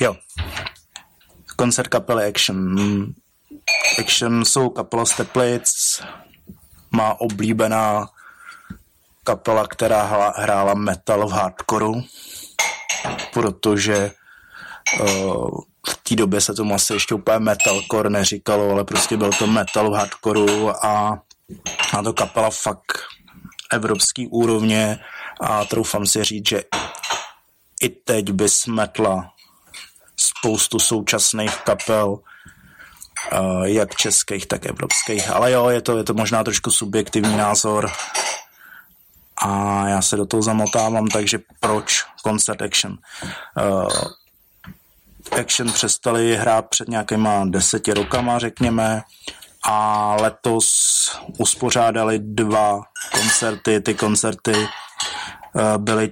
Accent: native